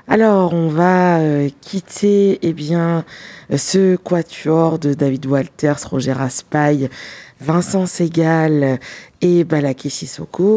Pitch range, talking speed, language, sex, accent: 145-185 Hz, 110 wpm, French, female, French